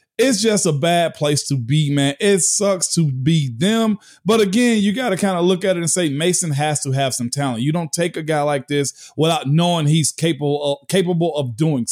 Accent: American